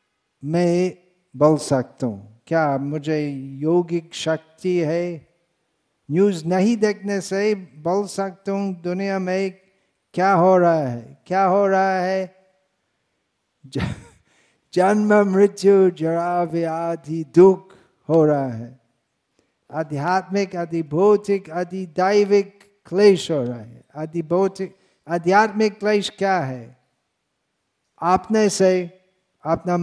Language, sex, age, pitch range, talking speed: Hindi, male, 50-69, 160-190 Hz, 95 wpm